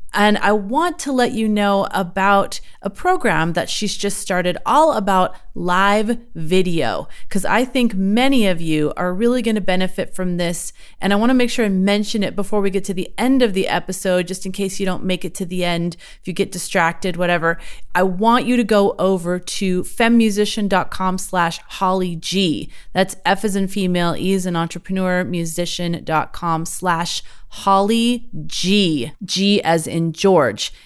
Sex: female